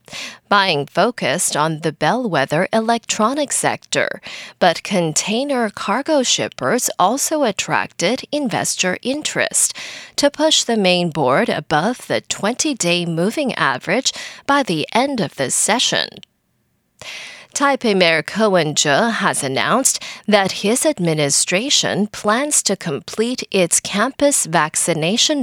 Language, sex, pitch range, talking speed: English, female, 175-260 Hz, 110 wpm